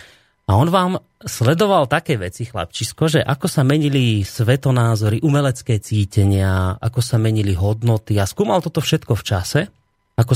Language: Slovak